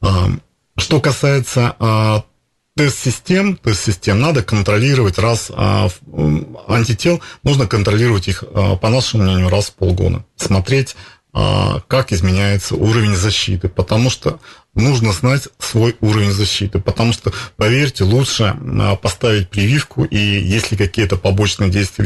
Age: 40-59